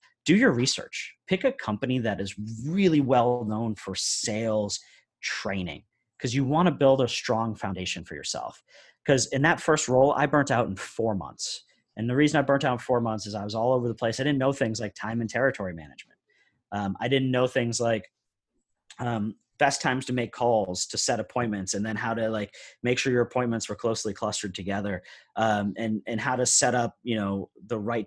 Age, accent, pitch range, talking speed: 30-49, American, 105-130 Hz, 210 wpm